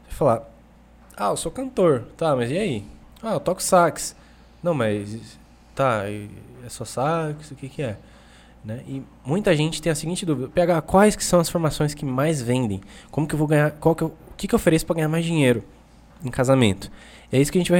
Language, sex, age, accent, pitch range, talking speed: Portuguese, male, 20-39, Brazilian, 110-155 Hz, 215 wpm